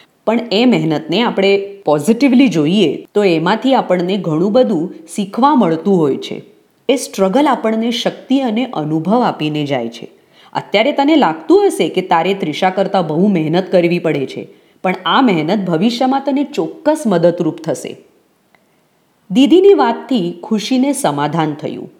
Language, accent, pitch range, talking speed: English, Indian, 175-255 Hz, 60 wpm